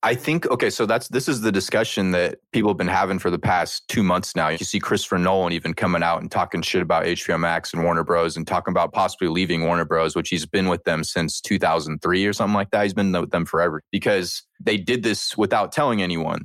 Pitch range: 90-110 Hz